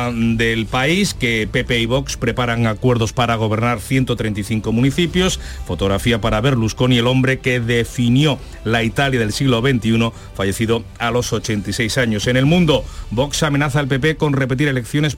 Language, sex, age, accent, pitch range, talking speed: Spanish, male, 40-59, Spanish, 115-140 Hz, 155 wpm